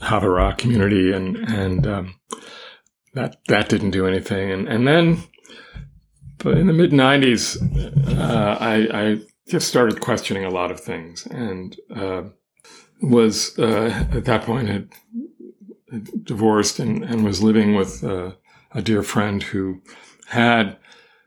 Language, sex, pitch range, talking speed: English, male, 100-120 Hz, 135 wpm